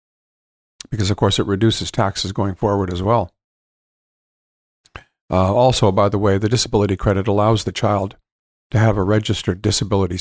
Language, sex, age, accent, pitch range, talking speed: English, male, 50-69, American, 95-115 Hz, 155 wpm